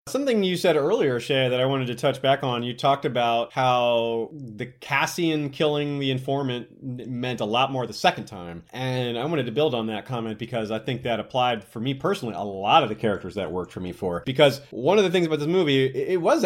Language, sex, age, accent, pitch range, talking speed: English, male, 30-49, American, 115-140 Hz, 235 wpm